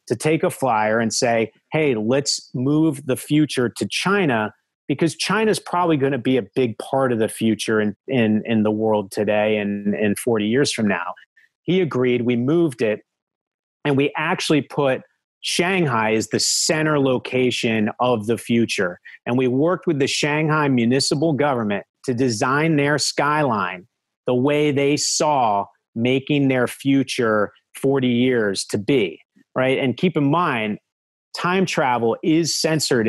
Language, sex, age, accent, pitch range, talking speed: English, male, 30-49, American, 115-145 Hz, 155 wpm